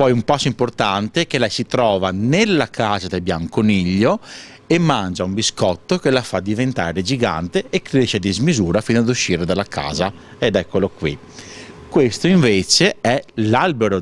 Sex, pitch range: male, 95-125 Hz